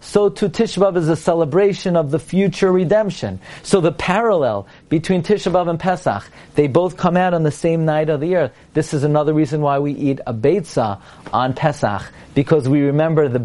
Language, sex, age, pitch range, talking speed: English, male, 40-59, 145-185 Hz, 185 wpm